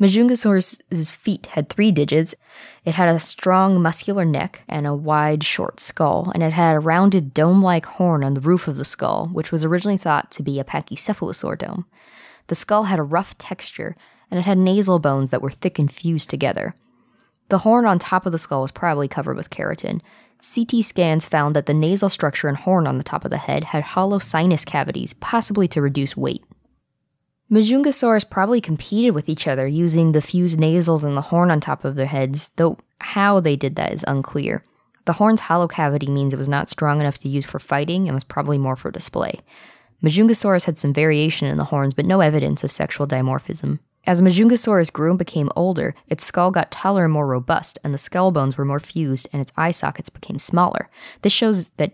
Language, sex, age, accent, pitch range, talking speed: English, female, 20-39, American, 145-190 Hz, 205 wpm